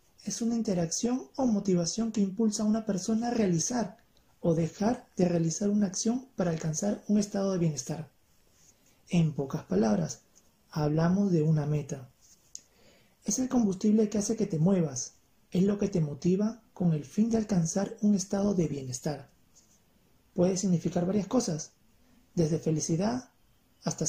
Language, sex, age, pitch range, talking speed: Spanish, male, 30-49, 150-200 Hz, 150 wpm